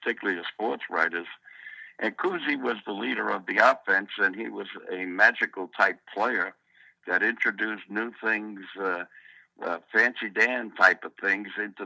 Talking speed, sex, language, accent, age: 155 wpm, male, English, American, 60-79